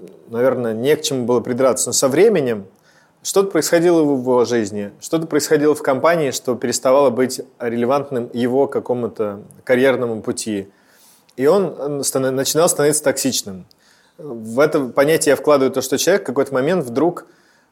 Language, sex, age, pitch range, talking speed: Russian, male, 20-39, 125-150 Hz, 145 wpm